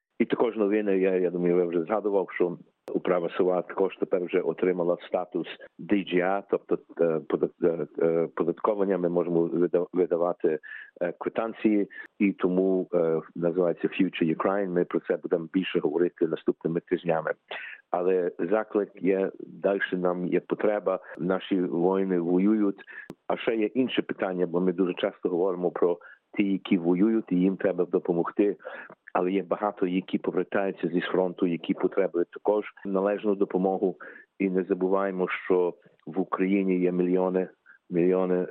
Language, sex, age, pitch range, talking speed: Ukrainian, male, 50-69, 90-95 Hz, 135 wpm